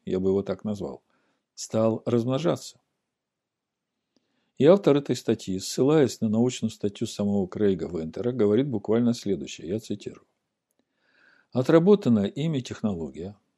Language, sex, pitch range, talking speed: Russian, male, 100-130 Hz, 115 wpm